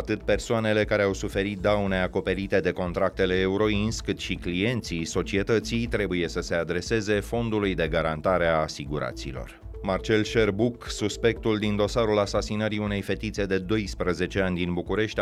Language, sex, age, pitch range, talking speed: Romanian, male, 30-49, 90-110 Hz, 140 wpm